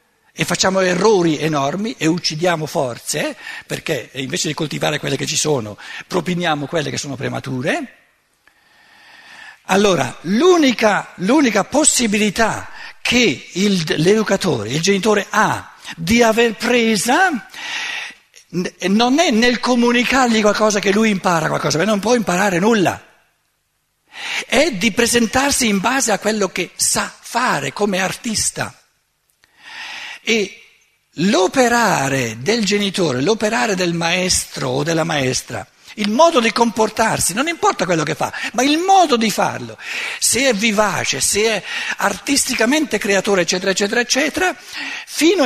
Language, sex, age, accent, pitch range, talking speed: Italian, male, 60-79, native, 185-260 Hz, 120 wpm